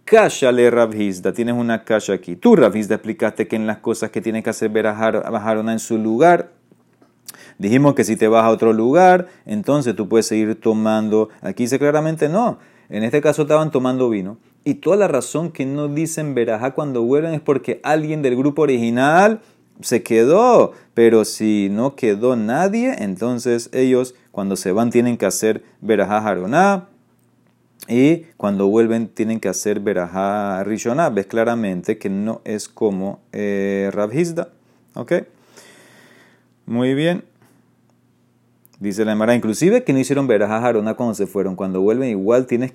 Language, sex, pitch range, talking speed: Spanish, male, 105-135 Hz, 160 wpm